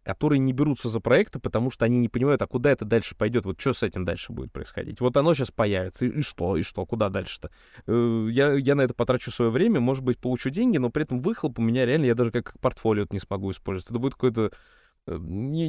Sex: male